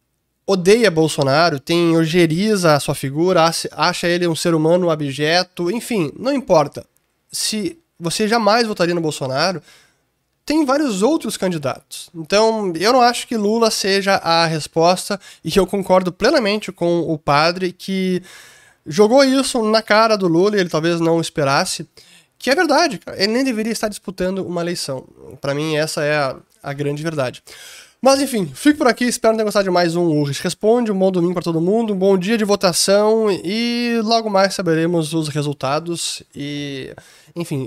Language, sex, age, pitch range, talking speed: Portuguese, male, 20-39, 145-205 Hz, 170 wpm